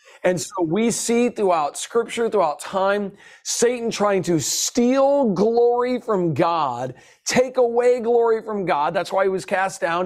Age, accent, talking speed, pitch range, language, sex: 40-59, American, 155 wpm, 175-225 Hz, English, male